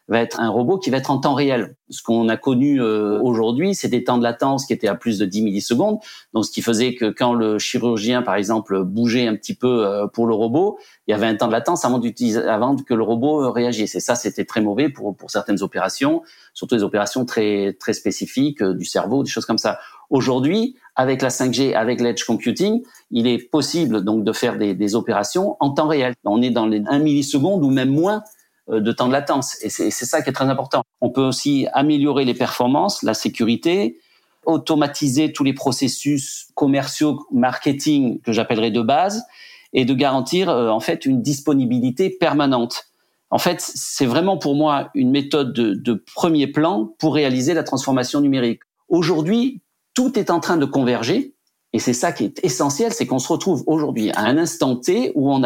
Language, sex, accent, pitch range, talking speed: French, male, French, 115-150 Hz, 200 wpm